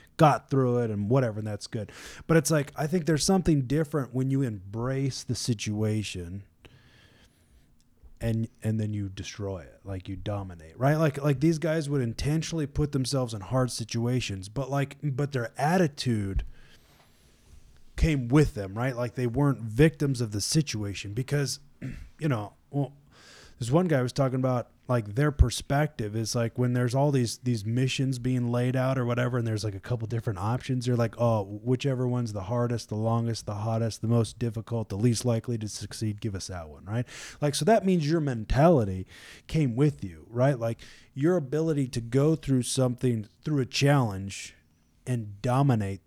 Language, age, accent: English, 20-39, American